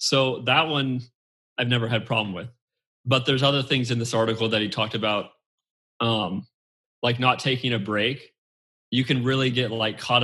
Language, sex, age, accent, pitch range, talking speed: English, male, 20-39, American, 110-125 Hz, 180 wpm